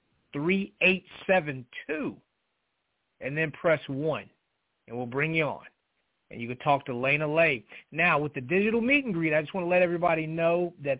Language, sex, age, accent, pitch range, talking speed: English, male, 30-49, American, 135-180 Hz, 190 wpm